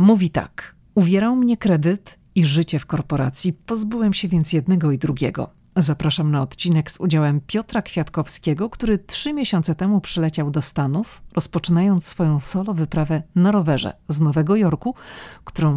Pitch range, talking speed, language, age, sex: 150-195 Hz, 150 wpm, Polish, 40-59, female